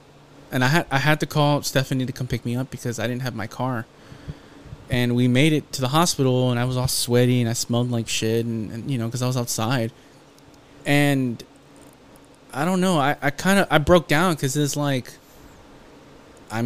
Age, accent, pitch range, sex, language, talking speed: 20-39, American, 120-145 Hz, male, English, 215 wpm